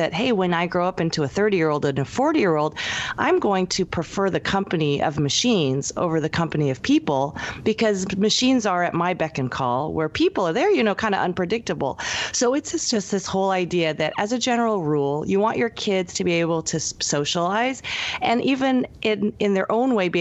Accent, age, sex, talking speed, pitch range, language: American, 30-49, female, 210 wpm, 155-210 Hz, English